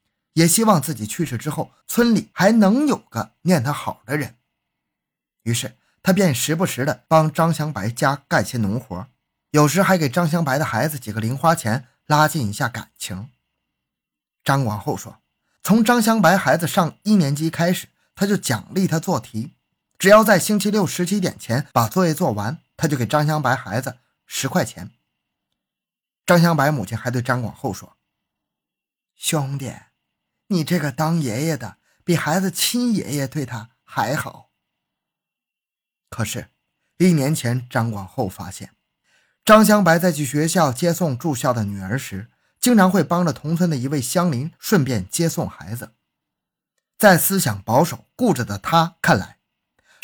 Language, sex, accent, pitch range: Chinese, male, native, 125-180 Hz